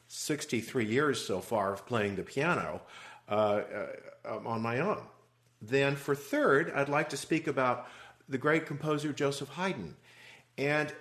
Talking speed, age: 145 wpm, 50-69